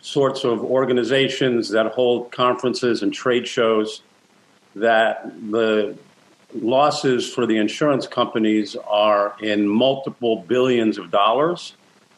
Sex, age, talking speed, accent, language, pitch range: male, 50-69, 110 wpm, American, English, 115-135 Hz